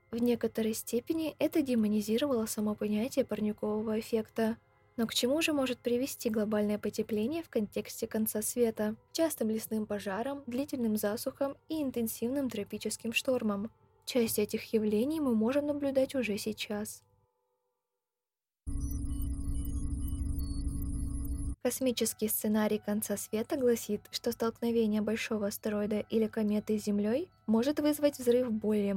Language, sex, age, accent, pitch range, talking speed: Russian, female, 20-39, native, 210-255 Hz, 115 wpm